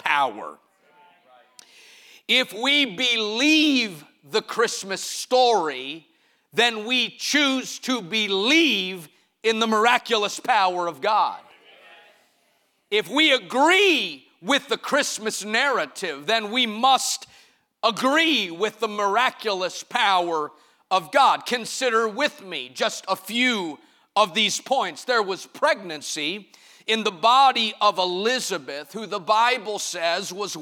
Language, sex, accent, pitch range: English, male, American, 180-245 Hz